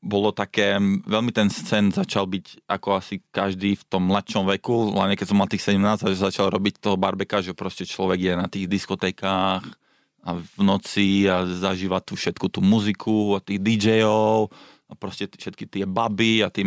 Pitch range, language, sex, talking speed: 95-105 Hz, Slovak, male, 185 wpm